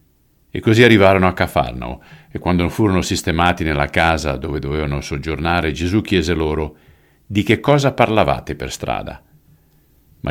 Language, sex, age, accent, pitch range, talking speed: Italian, male, 50-69, native, 75-90 Hz, 140 wpm